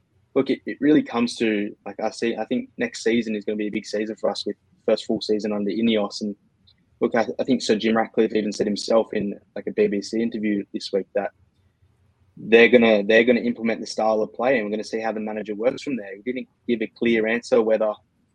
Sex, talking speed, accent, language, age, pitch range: male, 235 wpm, Australian, English, 20-39, 105-120 Hz